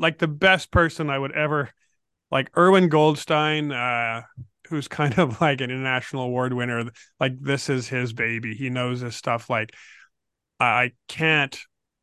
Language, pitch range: English, 135-160 Hz